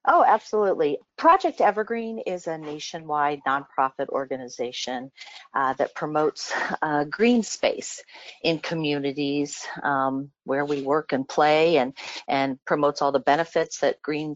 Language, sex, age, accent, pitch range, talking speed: English, female, 40-59, American, 145-195 Hz, 130 wpm